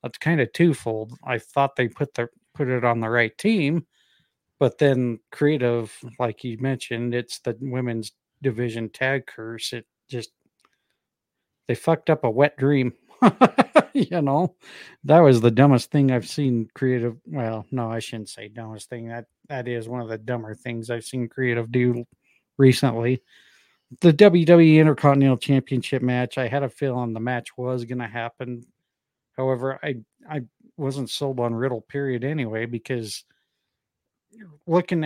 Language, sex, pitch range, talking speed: English, male, 120-145 Hz, 155 wpm